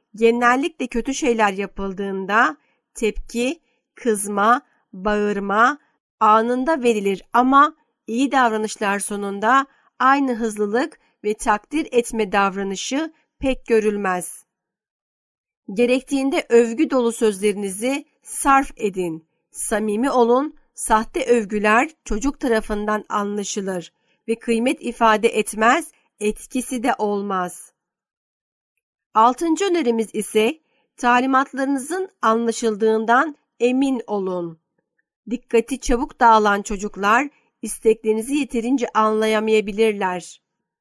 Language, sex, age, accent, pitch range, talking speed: Turkish, female, 50-69, native, 210-260 Hz, 80 wpm